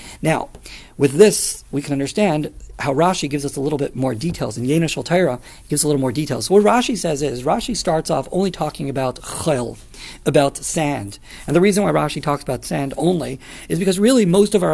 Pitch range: 145-200 Hz